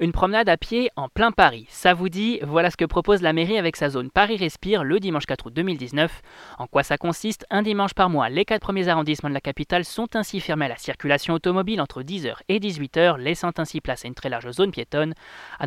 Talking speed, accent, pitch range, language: 240 wpm, French, 140-200 Hz, French